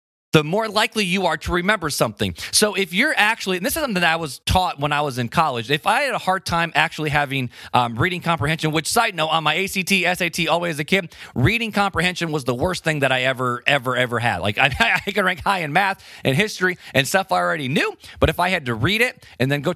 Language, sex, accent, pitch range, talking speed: English, male, American, 135-190 Hz, 250 wpm